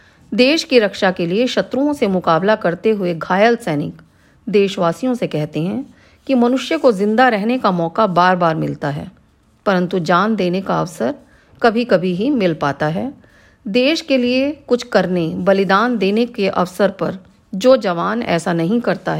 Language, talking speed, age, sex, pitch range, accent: Hindi, 165 wpm, 40-59, female, 180-240 Hz, native